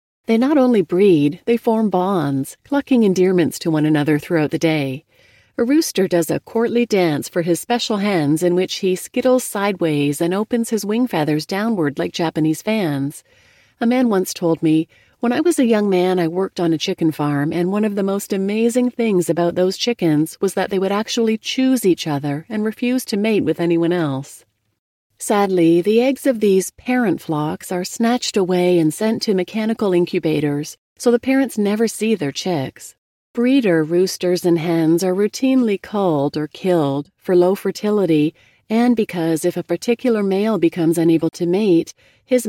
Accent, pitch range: American, 165-215 Hz